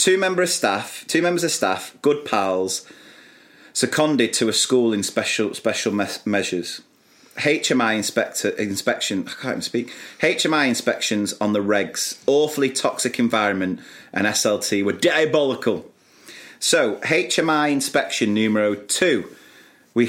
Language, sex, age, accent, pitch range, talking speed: English, male, 30-49, British, 110-165 Hz, 130 wpm